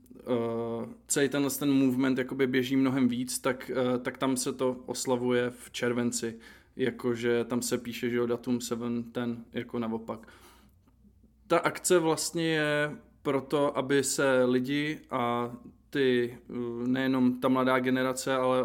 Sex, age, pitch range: male, 20-39, 125-135 Hz